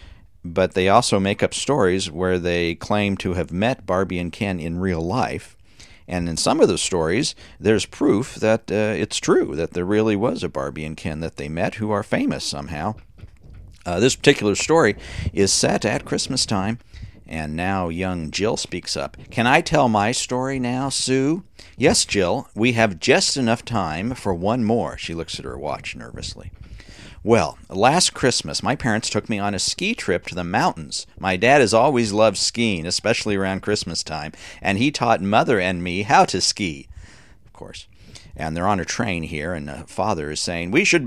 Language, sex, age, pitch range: English, male, 50-69, 85-110 Hz